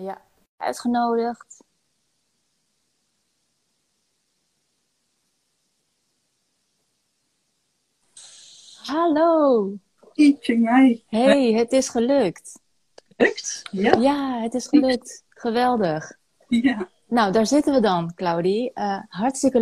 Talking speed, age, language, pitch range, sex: 65 wpm, 30-49, Dutch, 190-245 Hz, female